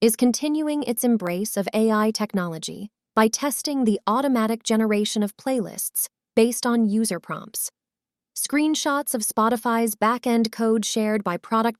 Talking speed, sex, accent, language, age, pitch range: 130 wpm, female, American, English, 20-39, 210-245 Hz